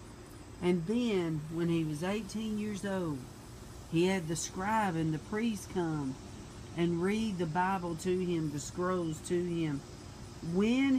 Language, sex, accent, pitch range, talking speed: English, female, American, 175-220 Hz, 145 wpm